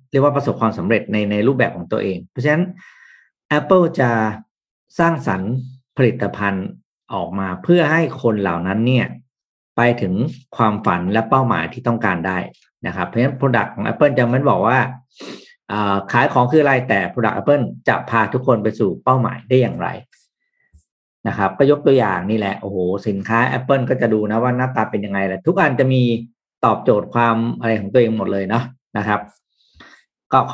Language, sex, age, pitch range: Thai, male, 50-69, 105-135 Hz